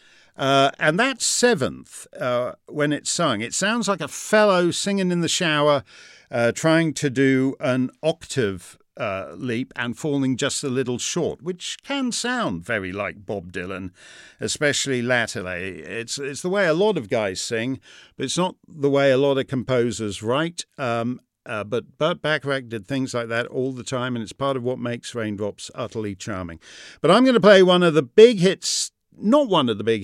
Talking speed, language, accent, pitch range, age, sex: 190 wpm, English, British, 120-170 Hz, 50-69, male